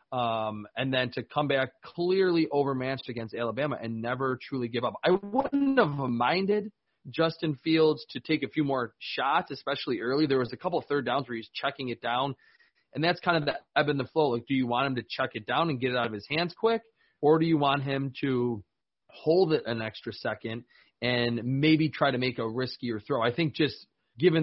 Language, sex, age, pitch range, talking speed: English, male, 30-49, 120-155 Hz, 220 wpm